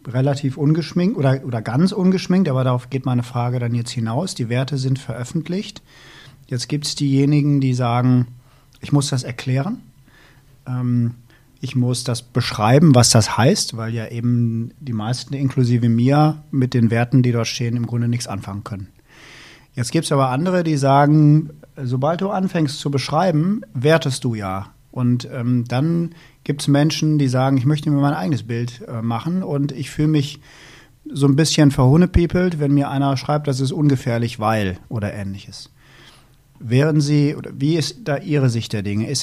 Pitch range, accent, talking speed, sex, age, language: 120-145 Hz, German, 175 wpm, male, 40-59, German